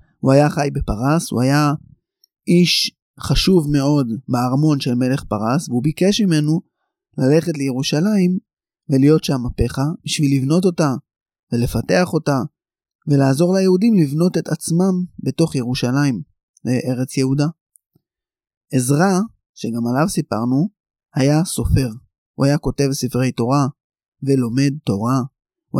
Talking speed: 115 wpm